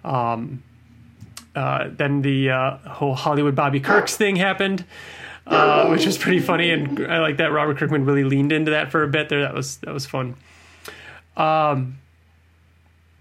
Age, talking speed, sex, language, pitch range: 30-49, 165 wpm, male, English, 120-145 Hz